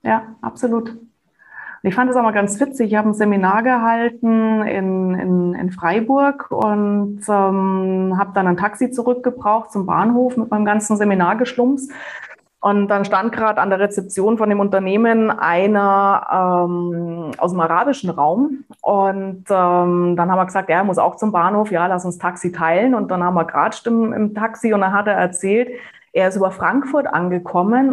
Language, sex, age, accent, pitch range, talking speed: German, female, 20-39, German, 200-280 Hz, 180 wpm